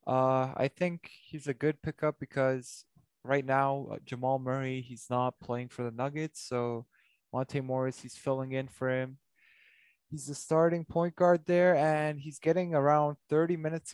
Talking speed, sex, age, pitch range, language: 170 wpm, male, 20-39, 130-155 Hz, English